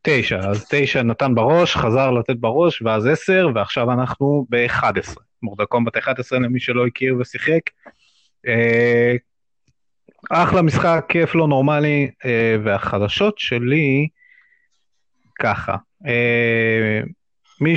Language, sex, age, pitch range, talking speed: Hebrew, male, 30-49, 115-150 Hz, 105 wpm